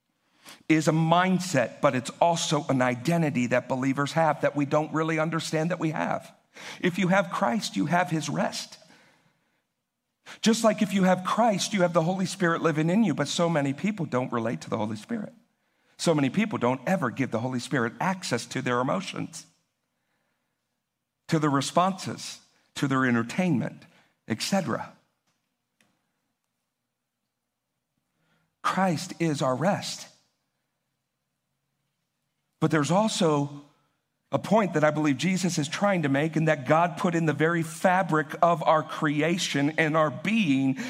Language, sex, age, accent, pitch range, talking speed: English, male, 50-69, American, 145-185 Hz, 150 wpm